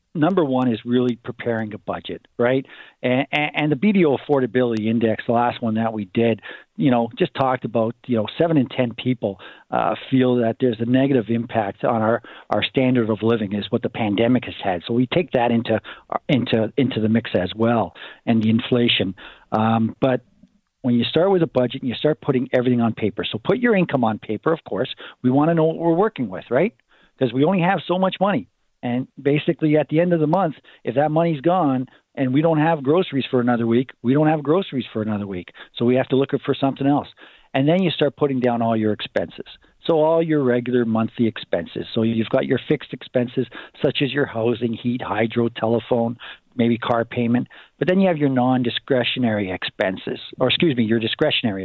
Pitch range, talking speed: 115-145 Hz, 210 wpm